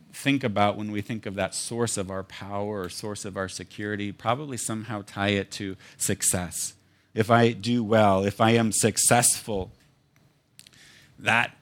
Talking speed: 160 wpm